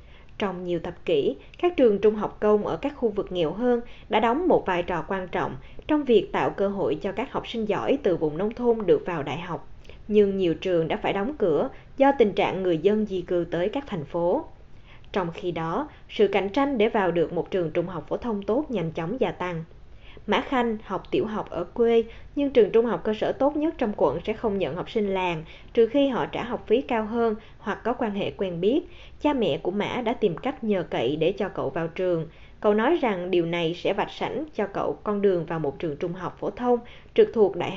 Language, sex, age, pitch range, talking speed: Vietnamese, female, 10-29, 180-240 Hz, 240 wpm